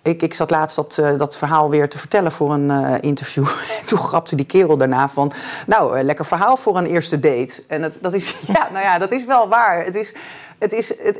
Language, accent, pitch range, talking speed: Dutch, Dutch, 140-195 Hz, 190 wpm